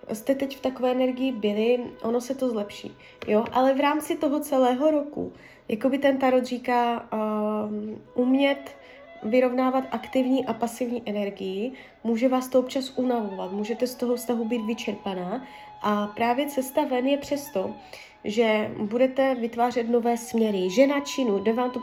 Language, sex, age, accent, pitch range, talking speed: Czech, female, 20-39, native, 225-265 Hz, 150 wpm